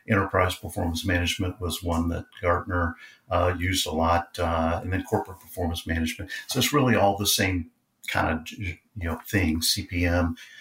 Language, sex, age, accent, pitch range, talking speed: English, male, 50-69, American, 85-100 Hz, 165 wpm